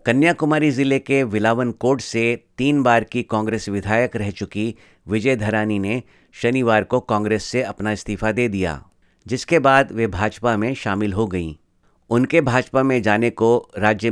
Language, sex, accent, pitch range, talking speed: Hindi, male, native, 105-125 Hz, 160 wpm